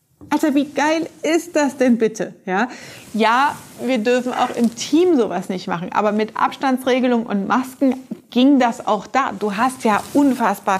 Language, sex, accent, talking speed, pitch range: German, female, German, 165 wpm, 205-255 Hz